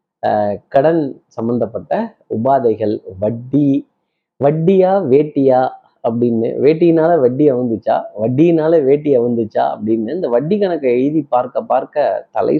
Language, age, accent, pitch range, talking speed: Tamil, 30-49, native, 125-175 Hz, 100 wpm